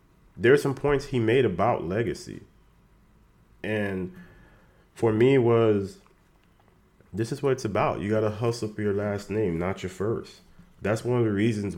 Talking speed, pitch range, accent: 170 wpm, 90-110 Hz, American